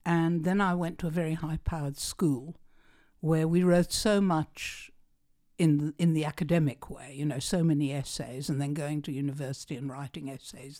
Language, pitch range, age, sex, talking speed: English, 145-195 Hz, 60-79, female, 190 wpm